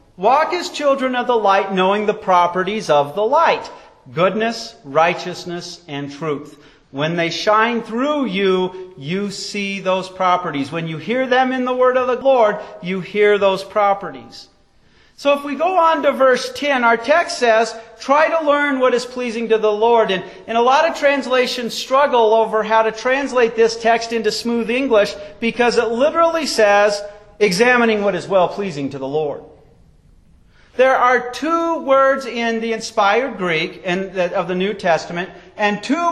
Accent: American